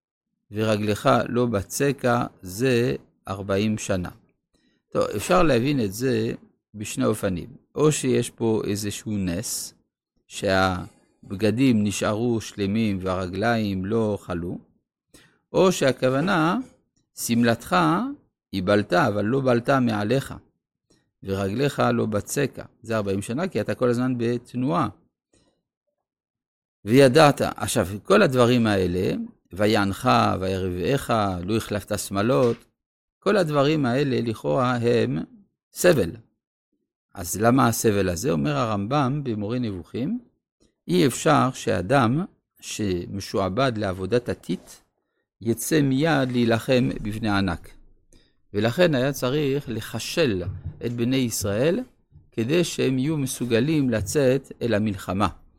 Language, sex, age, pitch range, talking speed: Hebrew, male, 50-69, 100-130 Hz, 100 wpm